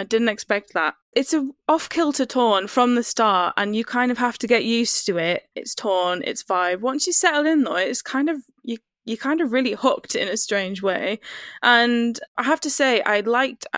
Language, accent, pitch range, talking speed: English, British, 205-255 Hz, 220 wpm